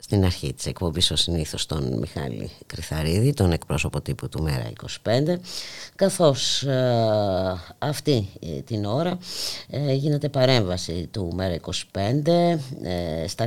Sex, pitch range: female, 90-135 Hz